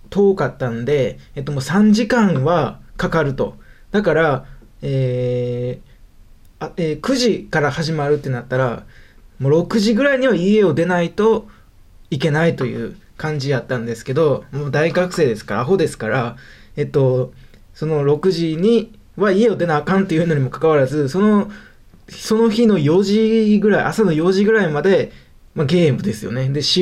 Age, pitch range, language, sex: 20-39, 135-180 Hz, Japanese, male